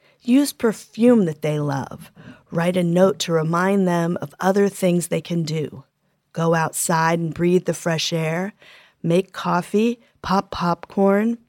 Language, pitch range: English, 160-205 Hz